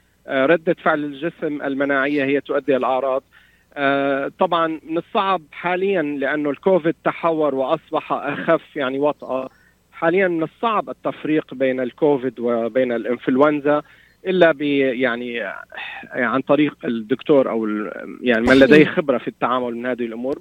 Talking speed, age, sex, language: 120 wpm, 40-59, male, Arabic